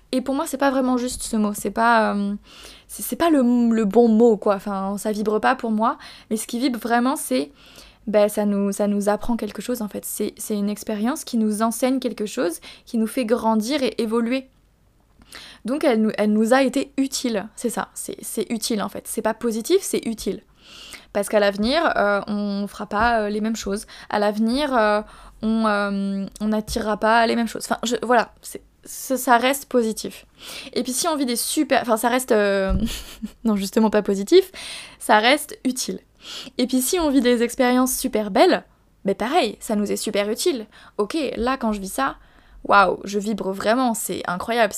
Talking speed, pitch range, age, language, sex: 200 wpm, 210-255 Hz, 20-39, French, female